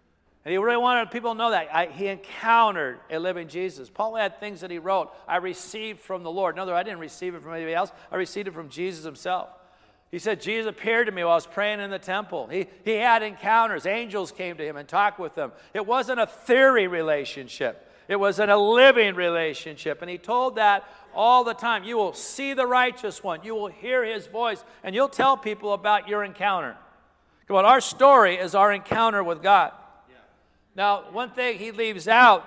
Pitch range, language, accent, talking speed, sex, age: 180-230 Hz, English, American, 215 wpm, male, 50-69